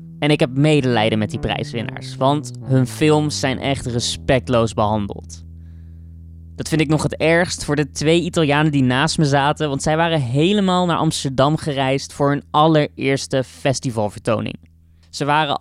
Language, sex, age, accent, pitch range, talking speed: Dutch, male, 20-39, Dutch, 125-155 Hz, 160 wpm